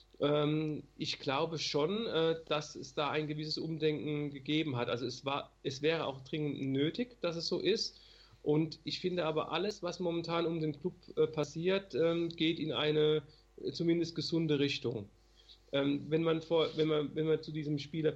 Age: 40-59